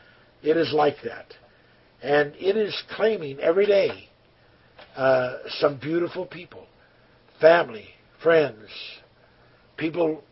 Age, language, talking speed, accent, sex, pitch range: 60-79, English, 100 wpm, American, male, 135-170 Hz